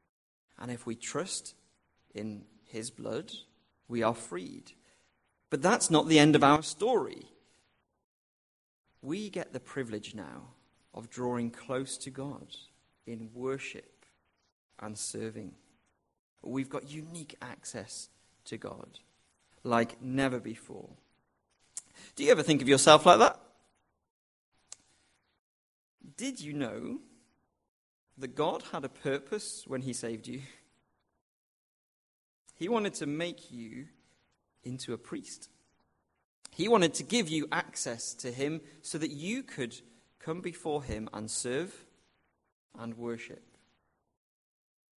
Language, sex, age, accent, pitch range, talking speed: English, male, 40-59, British, 110-150 Hz, 115 wpm